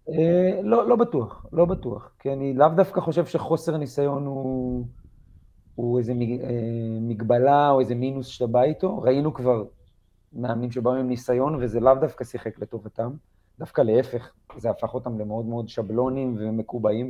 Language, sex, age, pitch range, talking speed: Hebrew, male, 40-59, 115-135 Hz, 145 wpm